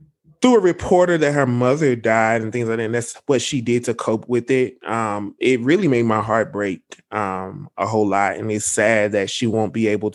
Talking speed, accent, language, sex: 230 wpm, American, English, male